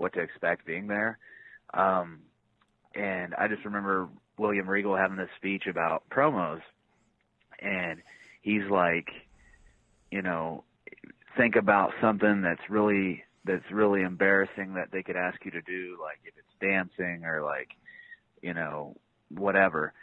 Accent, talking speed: American, 140 wpm